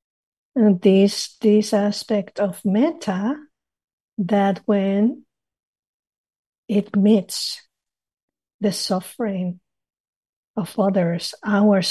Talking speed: 75 wpm